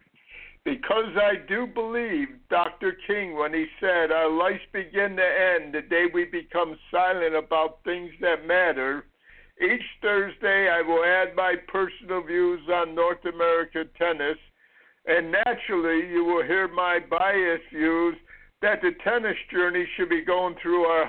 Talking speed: 150 wpm